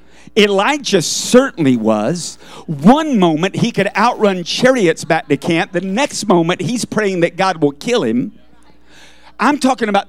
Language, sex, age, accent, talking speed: English, male, 50-69, American, 150 wpm